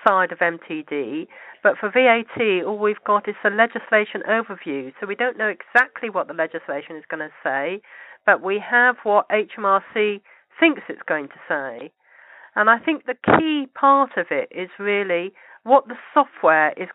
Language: English